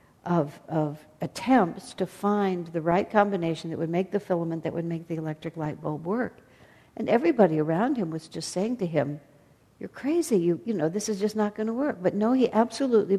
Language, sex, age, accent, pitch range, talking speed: English, female, 60-79, American, 160-210 Hz, 210 wpm